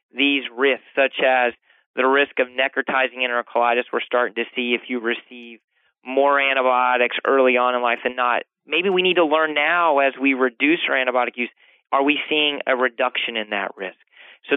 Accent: American